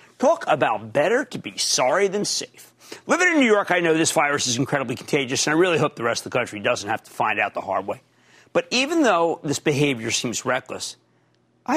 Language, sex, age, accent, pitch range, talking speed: English, male, 50-69, American, 140-200 Hz, 225 wpm